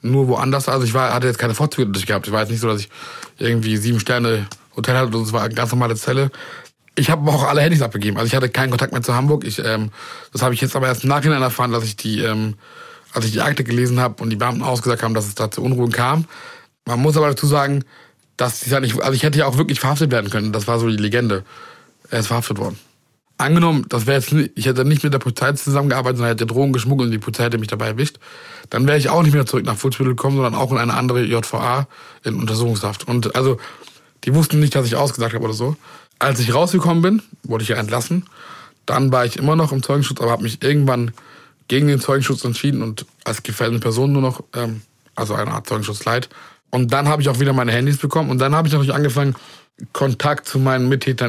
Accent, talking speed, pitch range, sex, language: German, 240 wpm, 115-140 Hz, male, German